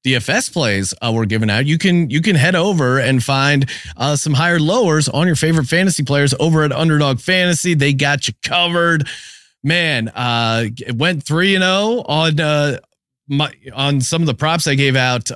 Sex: male